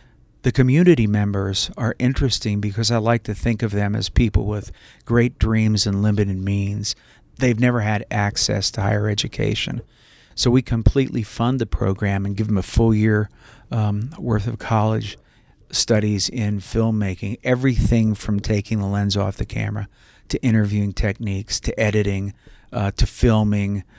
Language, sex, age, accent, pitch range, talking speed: English, male, 40-59, American, 100-115 Hz, 155 wpm